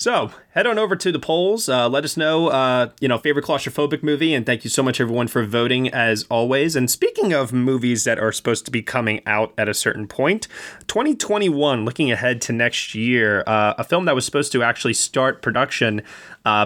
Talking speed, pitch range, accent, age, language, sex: 215 wpm, 110-140 Hz, American, 20-39, English, male